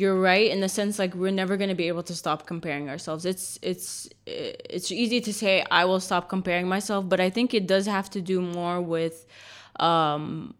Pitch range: 170-205 Hz